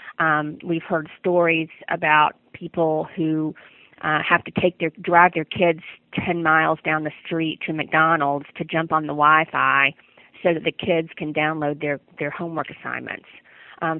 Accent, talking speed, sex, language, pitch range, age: American, 165 wpm, female, English, 155-185 Hz, 40-59